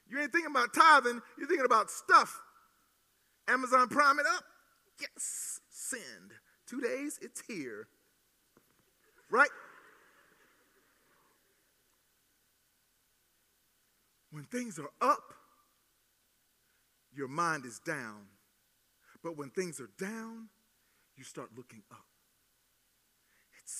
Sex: male